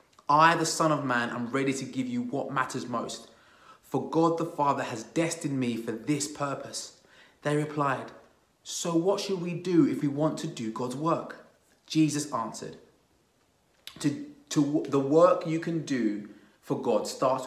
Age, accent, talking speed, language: 30-49, British, 160 wpm, English